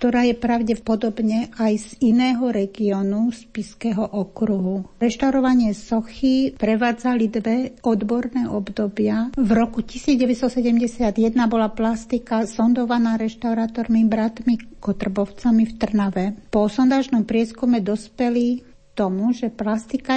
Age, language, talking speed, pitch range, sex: 60-79, Slovak, 100 wpm, 220-245 Hz, female